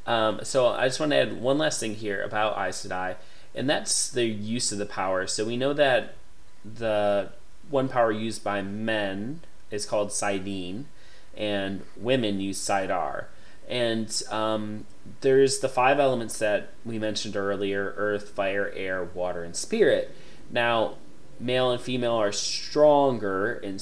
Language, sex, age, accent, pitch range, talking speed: English, male, 30-49, American, 95-115 Hz, 155 wpm